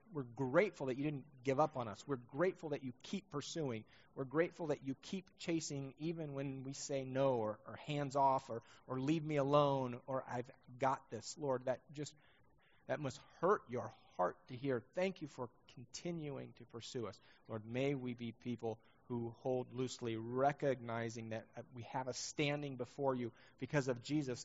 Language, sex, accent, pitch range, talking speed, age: English, male, American, 115-140 Hz, 185 wpm, 30-49